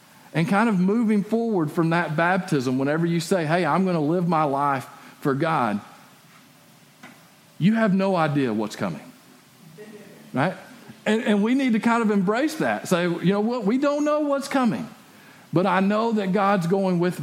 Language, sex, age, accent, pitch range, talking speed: English, male, 50-69, American, 150-190 Hz, 185 wpm